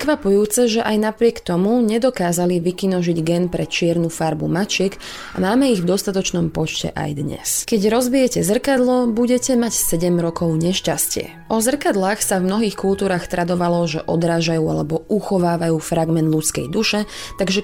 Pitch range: 165-215 Hz